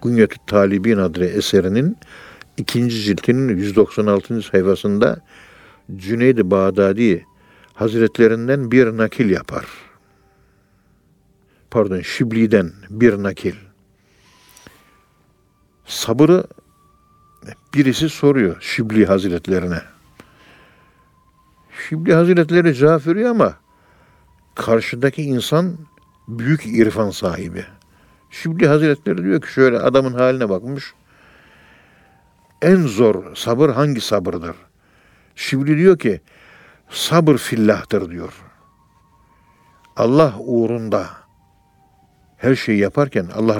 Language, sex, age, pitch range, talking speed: Turkish, male, 60-79, 100-130 Hz, 80 wpm